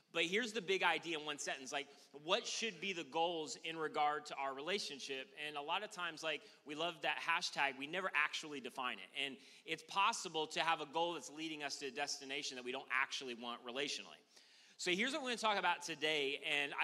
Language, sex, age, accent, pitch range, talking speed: English, male, 30-49, American, 140-180 Hz, 225 wpm